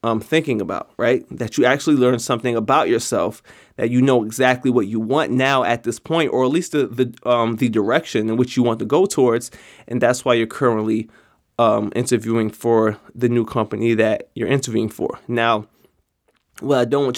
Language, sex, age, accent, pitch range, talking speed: Italian, male, 20-39, American, 115-130 Hz, 200 wpm